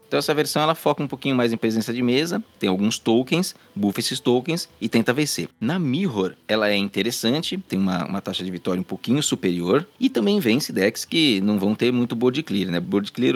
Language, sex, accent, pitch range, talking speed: Portuguese, male, Brazilian, 100-125 Hz, 220 wpm